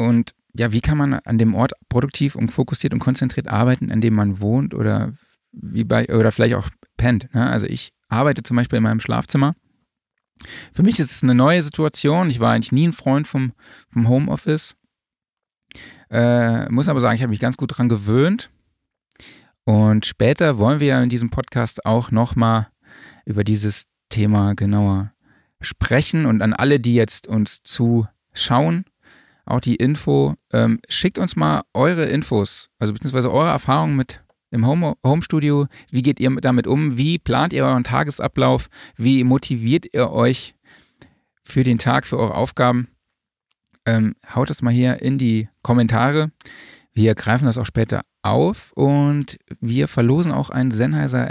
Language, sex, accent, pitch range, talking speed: German, male, German, 115-135 Hz, 160 wpm